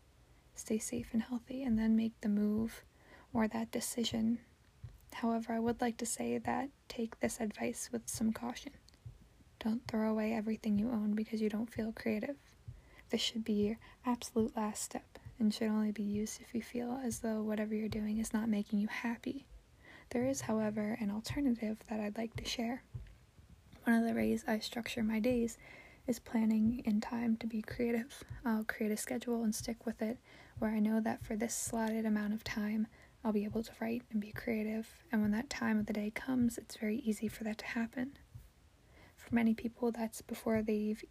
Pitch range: 215-235 Hz